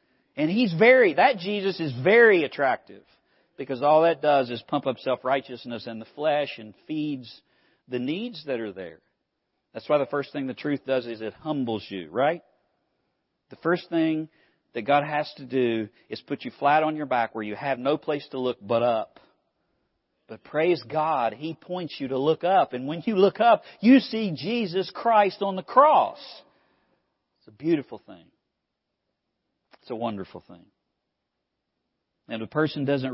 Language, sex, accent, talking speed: English, male, American, 175 wpm